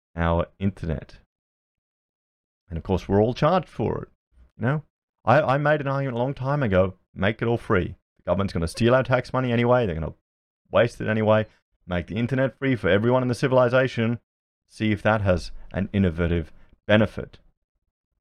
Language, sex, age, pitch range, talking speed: English, male, 30-49, 95-125 Hz, 180 wpm